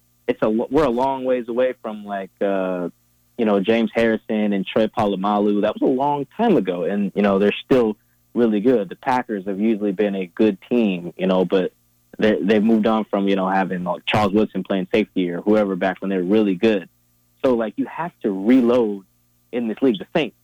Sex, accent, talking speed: male, American, 210 wpm